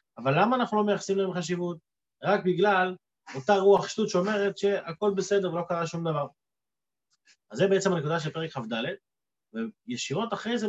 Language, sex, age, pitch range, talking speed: Hebrew, male, 30-49, 170-210 Hz, 165 wpm